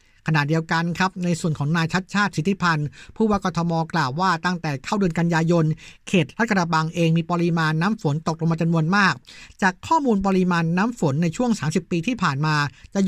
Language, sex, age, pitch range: Thai, male, 60-79, 155-195 Hz